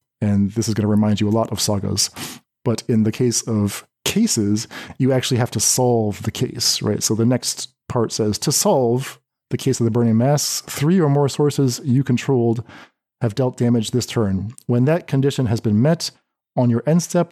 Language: English